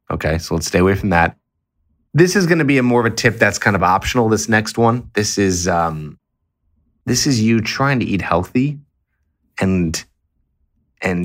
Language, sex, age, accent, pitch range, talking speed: English, male, 20-39, American, 85-105 Hz, 190 wpm